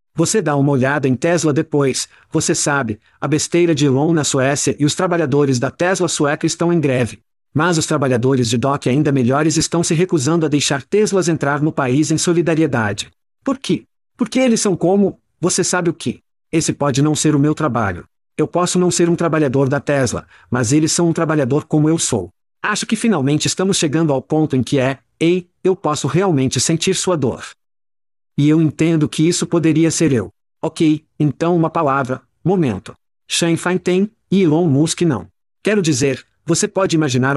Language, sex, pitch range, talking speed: Portuguese, male, 135-170 Hz, 185 wpm